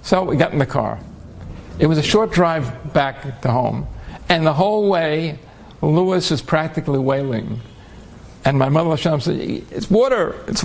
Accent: American